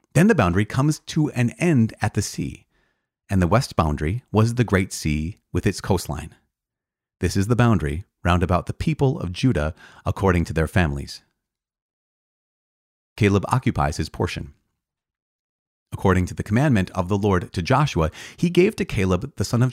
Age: 30-49